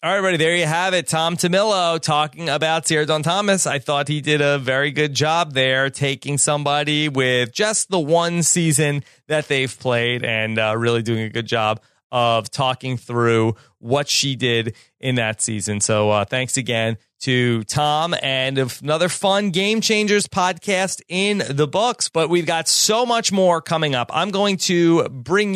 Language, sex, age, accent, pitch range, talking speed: English, male, 30-49, American, 125-160 Hz, 180 wpm